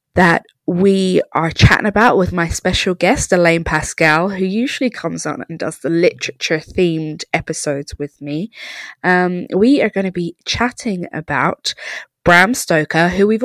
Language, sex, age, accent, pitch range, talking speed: English, female, 20-39, British, 160-225 Hz, 150 wpm